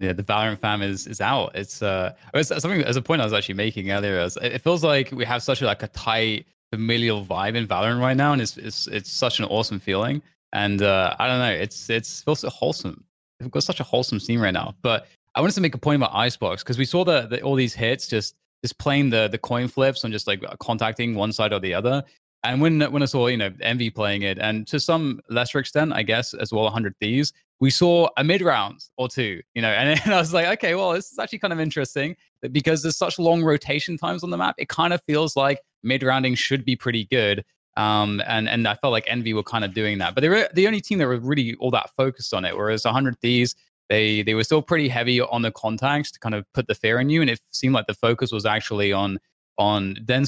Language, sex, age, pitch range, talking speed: English, male, 20-39, 105-140 Hz, 255 wpm